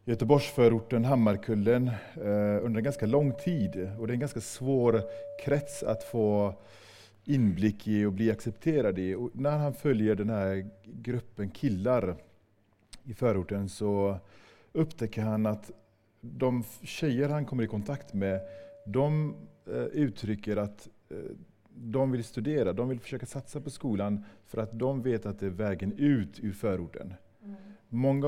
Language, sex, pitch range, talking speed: English, male, 105-125 Hz, 140 wpm